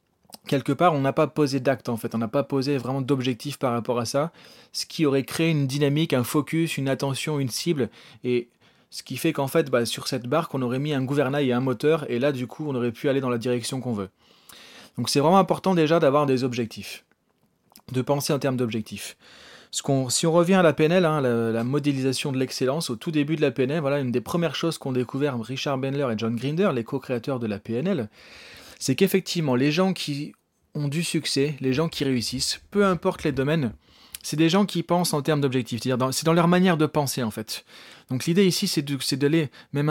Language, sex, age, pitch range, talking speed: French, male, 30-49, 130-160 Hz, 235 wpm